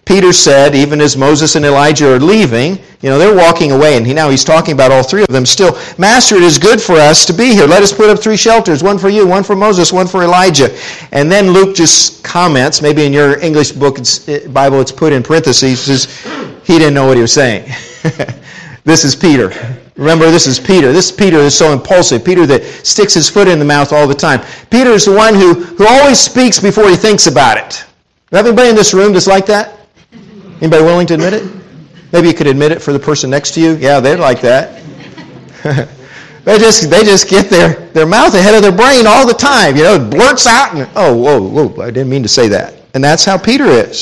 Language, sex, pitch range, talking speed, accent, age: English, male, 145-200 Hz, 235 wpm, American, 50-69